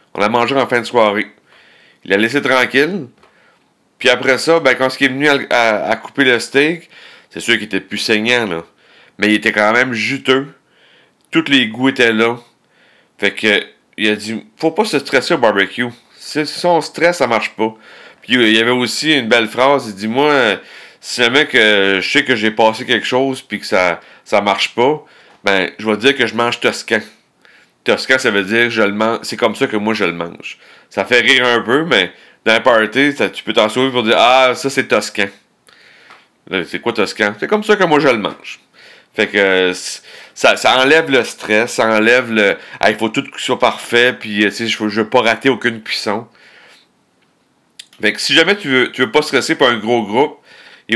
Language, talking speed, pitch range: French, 225 wpm, 110-135 Hz